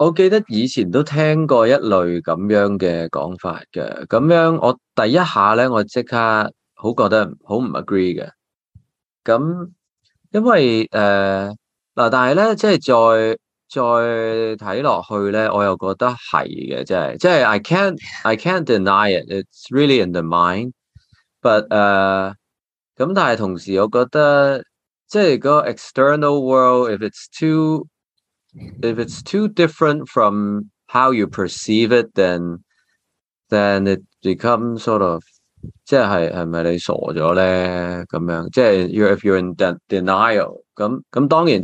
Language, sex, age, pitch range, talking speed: English, male, 20-39, 95-135 Hz, 65 wpm